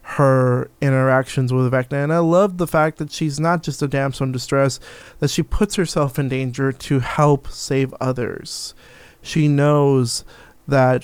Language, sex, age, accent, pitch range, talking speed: English, male, 30-49, American, 125-140 Hz, 165 wpm